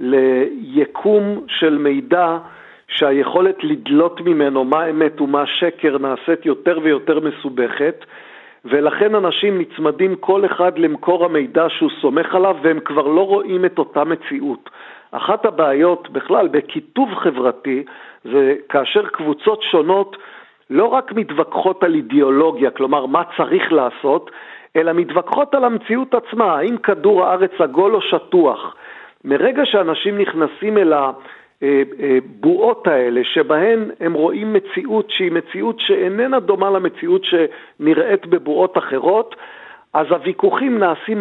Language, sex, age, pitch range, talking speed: Hebrew, male, 50-69, 155-225 Hz, 120 wpm